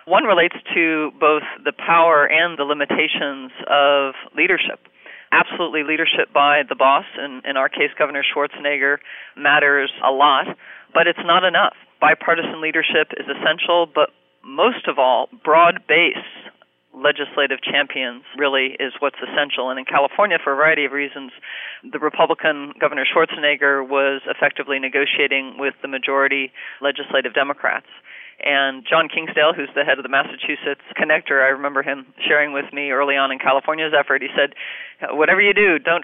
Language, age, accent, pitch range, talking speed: English, 40-59, American, 140-155 Hz, 150 wpm